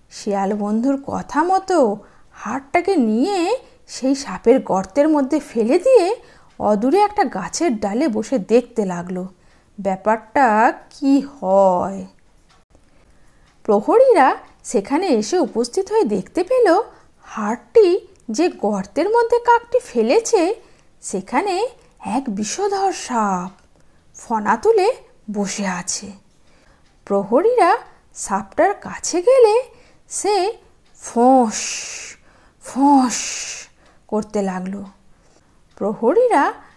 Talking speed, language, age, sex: 85 wpm, Bengali, 50-69, female